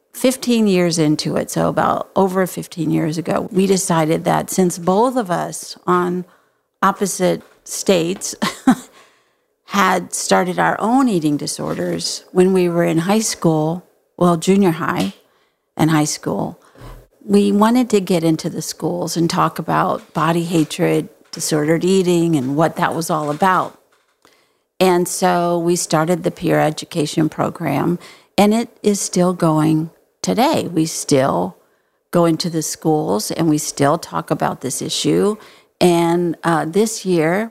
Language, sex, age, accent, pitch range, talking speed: English, female, 50-69, American, 160-195 Hz, 140 wpm